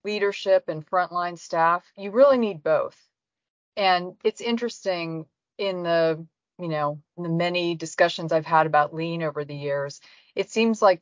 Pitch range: 155-190 Hz